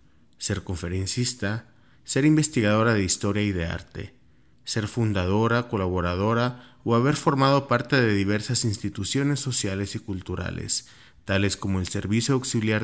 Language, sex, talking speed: Spanish, male, 125 wpm